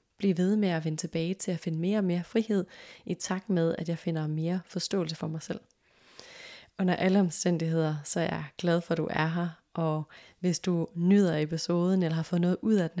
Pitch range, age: 165-190 Hz, 30-49